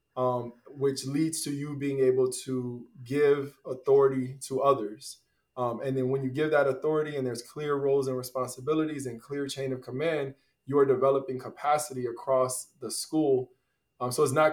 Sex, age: male, 20-39